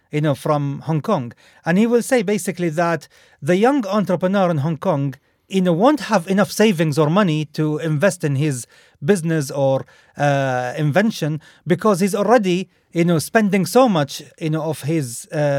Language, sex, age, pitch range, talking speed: English, male, 40-59, 155-205 Hz, 160 wpm